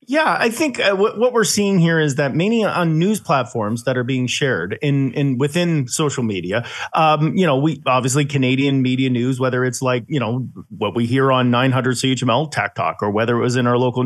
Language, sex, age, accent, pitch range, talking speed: English, male, 40-59, American, 125-165 Hz, 225 wpm